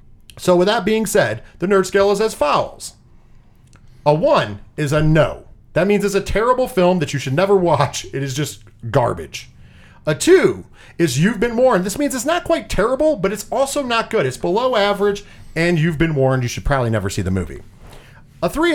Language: English